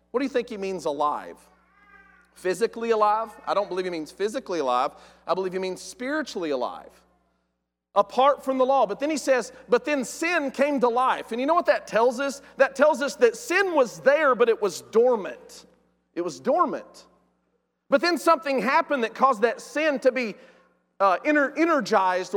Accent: American